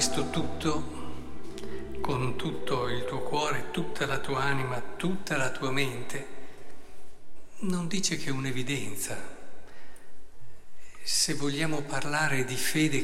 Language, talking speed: Italian, 115 wpm